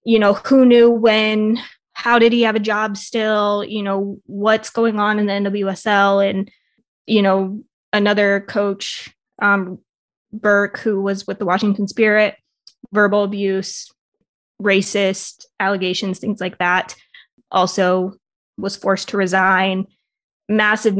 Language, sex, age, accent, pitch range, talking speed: English, female, 20-39, American, 195-215 Hz, 130 wpm